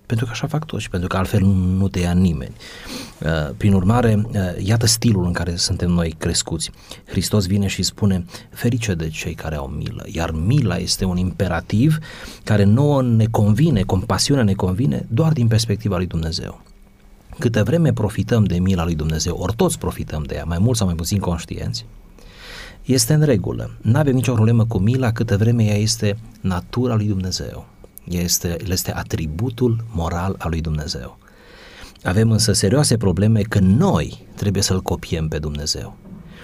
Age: 30-49